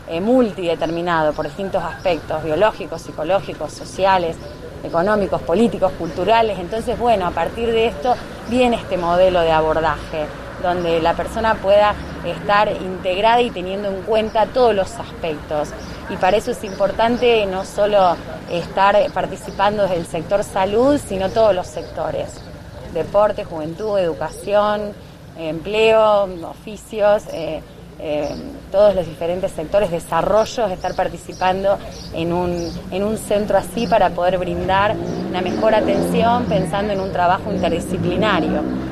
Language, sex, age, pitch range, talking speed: Spanish, female, 20-39, 170-220 Hz, 125 wpm